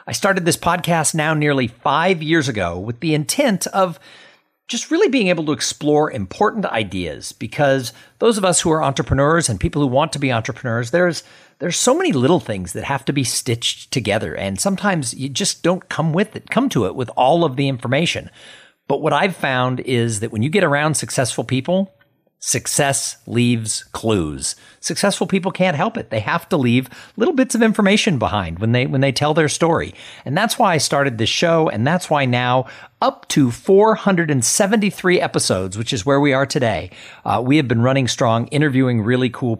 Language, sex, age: English, male, 50-69